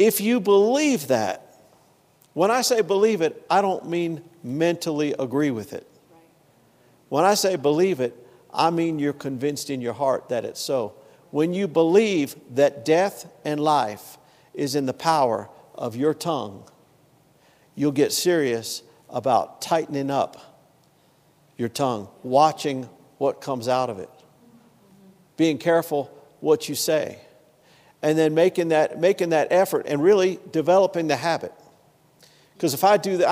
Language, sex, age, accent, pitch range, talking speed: English, male, 50-69, American, 135-175 Hz, 145 wpm